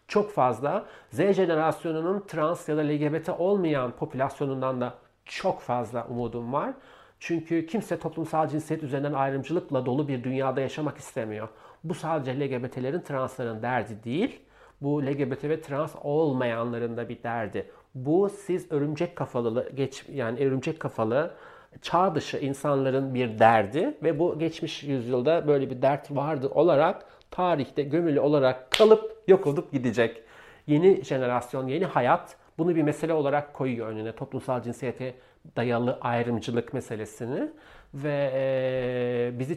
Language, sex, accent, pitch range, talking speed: Turkish, male, native, 125-155 Hz, 130 wpm